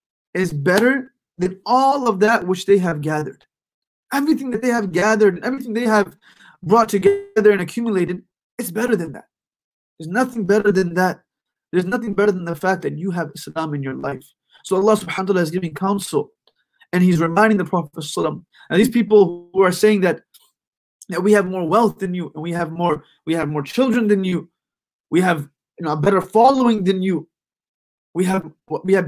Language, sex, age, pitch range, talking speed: English, male, 20-39, 170-215 Hz, 195 wpm